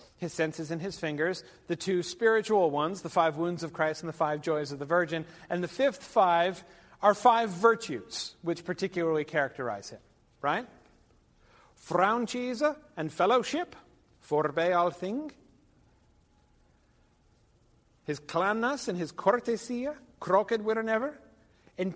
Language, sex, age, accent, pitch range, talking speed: English, male, 50-69, American, 160-210 Hz, 130 wpm